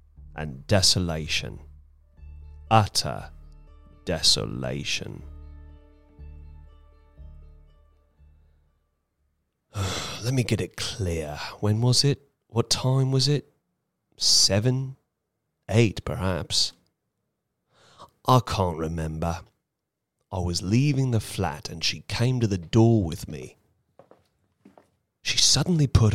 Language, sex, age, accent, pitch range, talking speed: English, male, 30-49, British, 80-120 Hz, 85 wpm